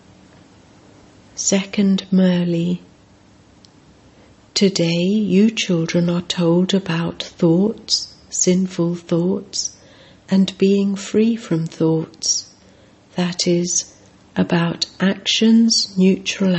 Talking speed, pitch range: 75 wpm, 170-195 Hz